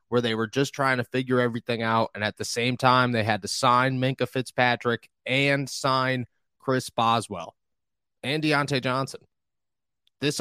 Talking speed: 160 wpm